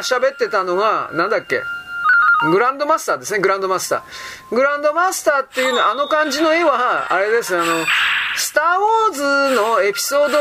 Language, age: Japanese, 40-59